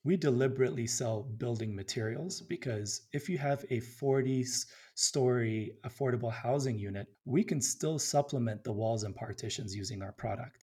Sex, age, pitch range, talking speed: male, 30-49, 115-140 Hz, 140 wpm